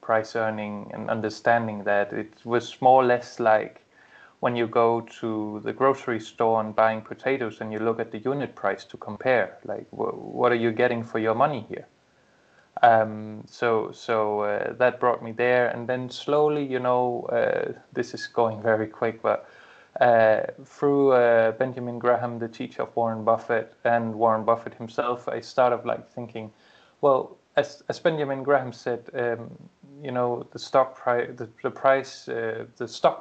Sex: male